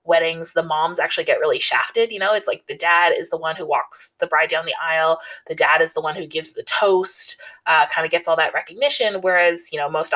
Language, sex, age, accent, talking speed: English, female, 20-39, American, 255 wpm